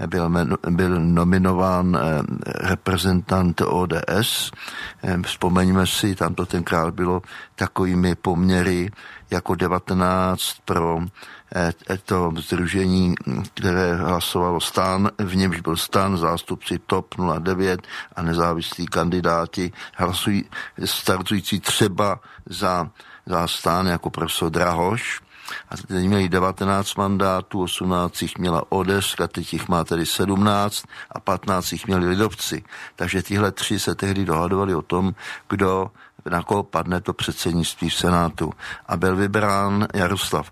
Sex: male